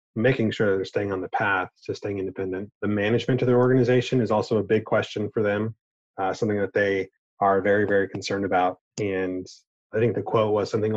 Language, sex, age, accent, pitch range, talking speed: English, male, 30-49, American, 95-115 Hz, 215 wpm